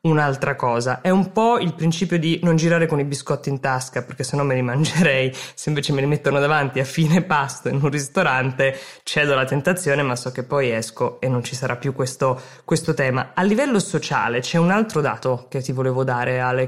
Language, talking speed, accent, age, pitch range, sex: Italian, 220 wpm, native, 20-39, 135-195 Hz, female